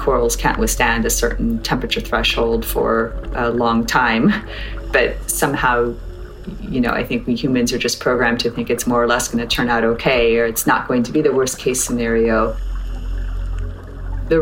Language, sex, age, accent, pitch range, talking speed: English, female, 30-49, American, 100-125 Hz, 185 wpm